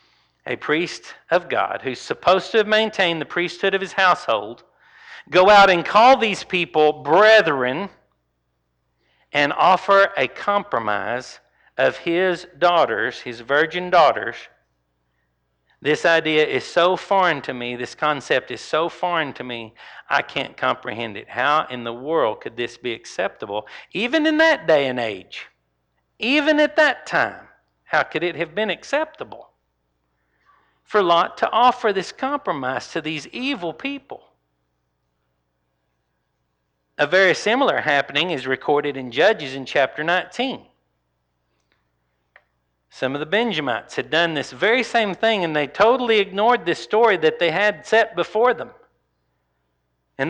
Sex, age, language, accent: male, 50-69, English, American